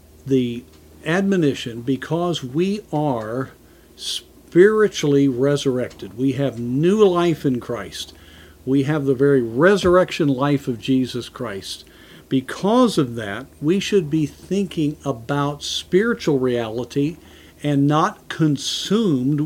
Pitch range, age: 125-175 Hz, 50-69